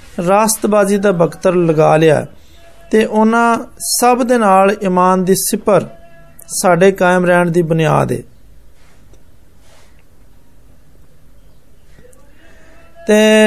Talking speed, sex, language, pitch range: 55 wpm, male, Hindi, 175-220 Hz